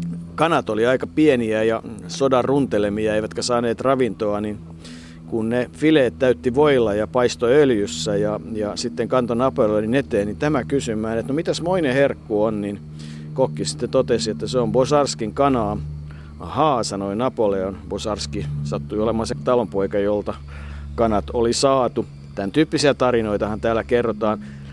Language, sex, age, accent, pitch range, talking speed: Finnish, male, 50-69, native, 100-125 Hz, 145 wpm